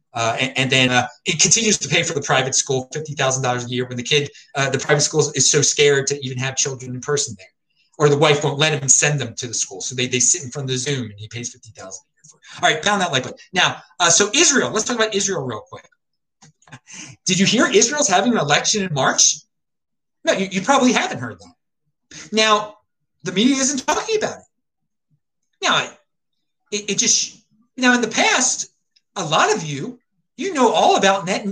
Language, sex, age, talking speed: English, male, 30-49, 230 wpm